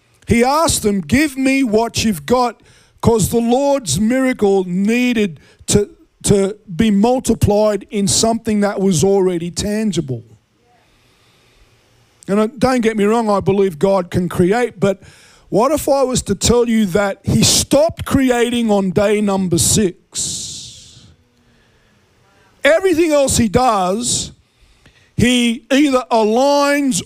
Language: English